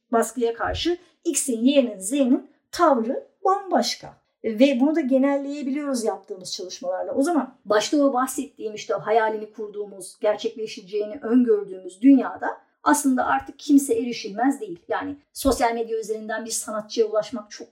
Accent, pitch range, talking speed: native, 220-275 Hz, 125 wpm